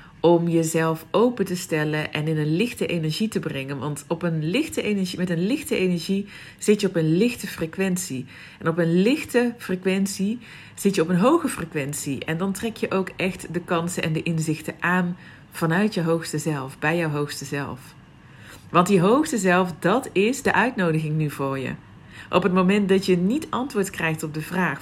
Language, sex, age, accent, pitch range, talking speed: Dutch, female, 40-59, Dutch, 155-190 Hz, 195 wpm